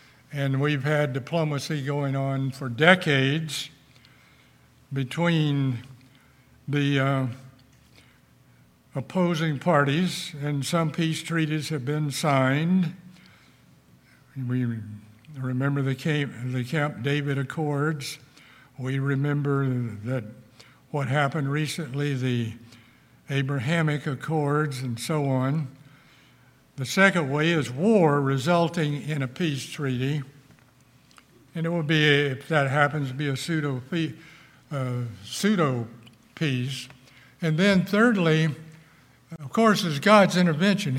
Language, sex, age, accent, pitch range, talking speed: English, male, 60-79, American, 135-165 Hz, 100 wpm